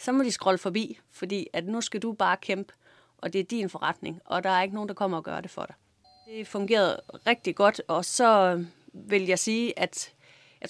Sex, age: female, 30-49